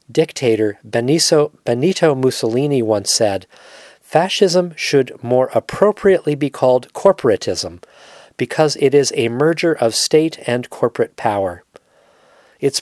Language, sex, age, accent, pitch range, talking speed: English, male, 40-59, American, 115-150 Hz, 110 wpm